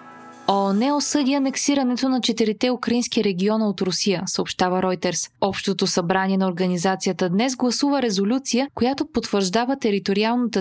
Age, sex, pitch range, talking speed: 20-39, female, 190-245 Hz, 120 wpm